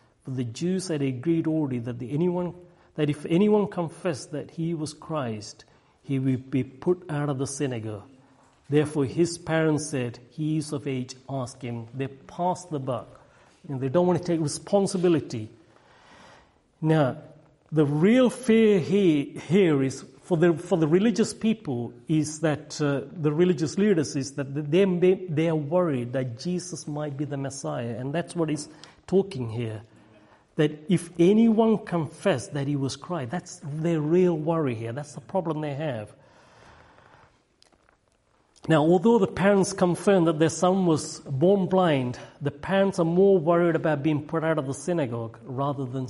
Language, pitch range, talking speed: English, 135-175 Hz, 165 wpm